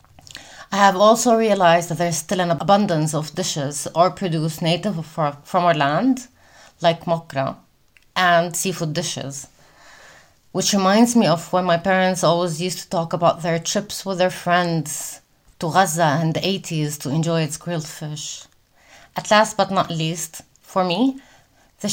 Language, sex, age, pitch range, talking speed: English, female, 30-49, 155-185 Hz, 155 wpm